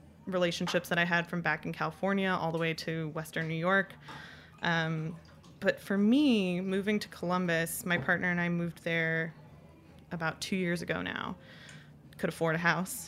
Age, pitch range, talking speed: 20-39, 170-200 Hz, 170 wpm